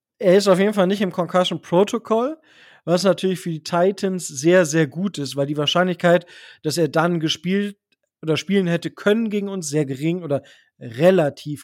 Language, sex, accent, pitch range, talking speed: German, male, German, 135-185 Hz, 180 wpm